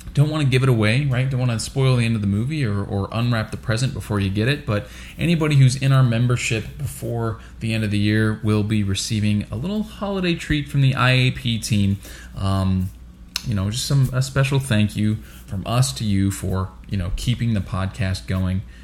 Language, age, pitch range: English, 20-39, 95-125 Hz